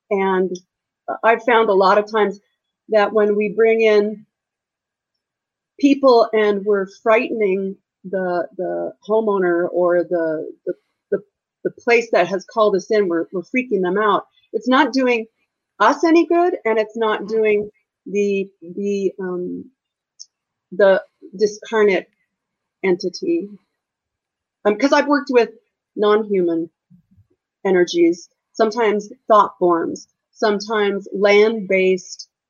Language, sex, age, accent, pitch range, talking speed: English, female, 40-59, American, 180-220 Hz, 120 wpm